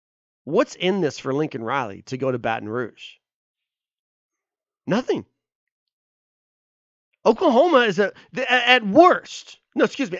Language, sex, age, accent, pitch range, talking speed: English, male, 30-49, American, 140-235 Hz, 125 wpm